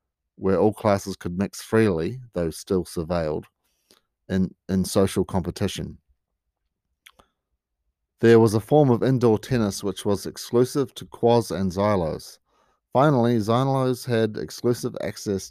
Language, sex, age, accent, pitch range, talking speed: English, male, 40-59, Australian, 90-110 Hz, 125 wpm